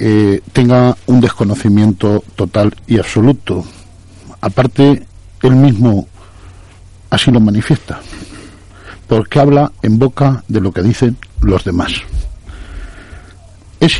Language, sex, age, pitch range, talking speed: Spanish, male, 50-69, 95-130 Hz, 105 wpm